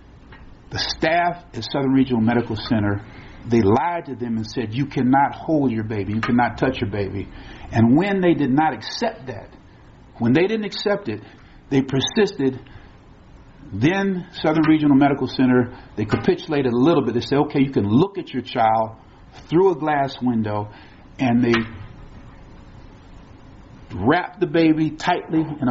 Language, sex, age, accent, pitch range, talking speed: English, male, 50-69, American, 115-145 Hz, 155 wpm